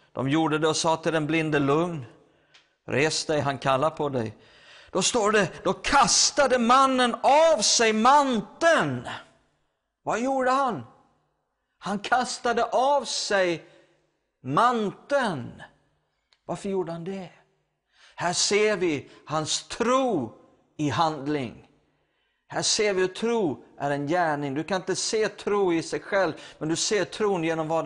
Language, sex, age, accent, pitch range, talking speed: English, male, 50-69, Swedish, 155-195 Hz, 140 wpm